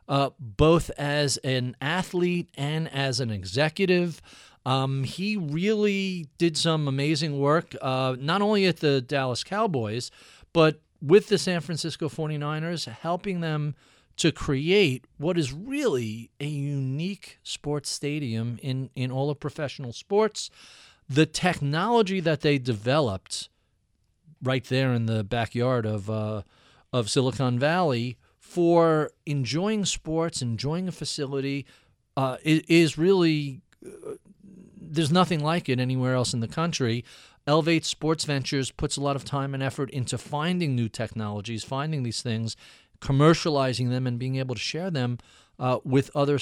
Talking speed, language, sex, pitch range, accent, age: 140 wpm, English, male, 125-165 Hz, American, 40-59